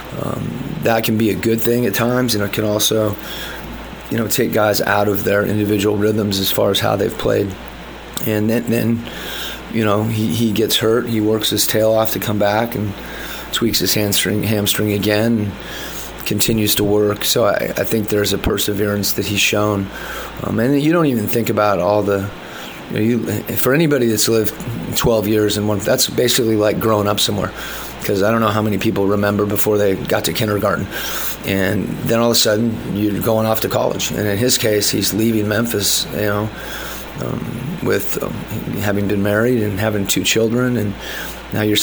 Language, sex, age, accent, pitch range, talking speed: English, male, 30-49, American, 105-110 Hz, 200 wpm